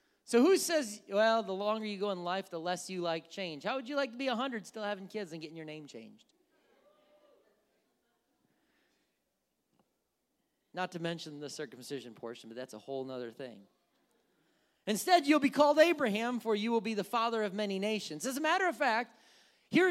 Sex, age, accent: male, 30-49, American